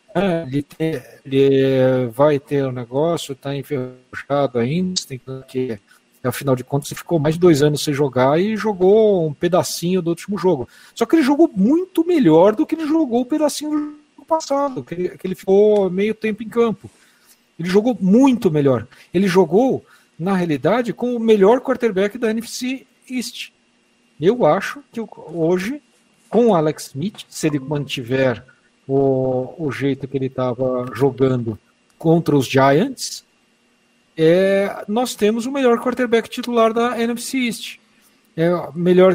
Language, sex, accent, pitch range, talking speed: Portuguese, male, Brazilian, 140-230 Hz, 155 wpm